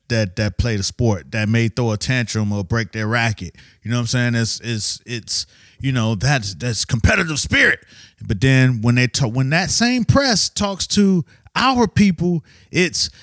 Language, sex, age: English, male, 30-49